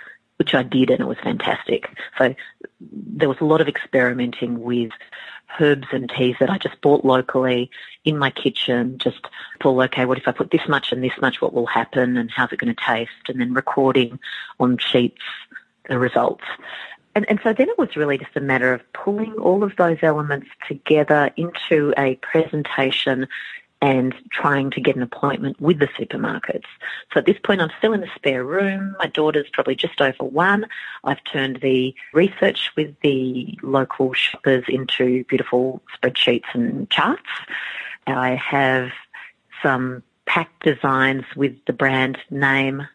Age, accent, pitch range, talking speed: 30-49, Australian, 130-155 Hz, 170 wpm